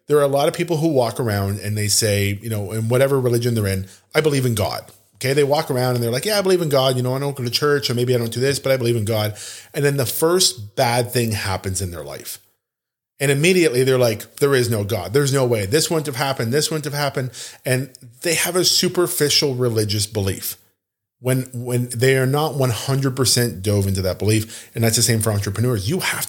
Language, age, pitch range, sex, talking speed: English, 40-59, 105-135 Hz, male, 245 wpm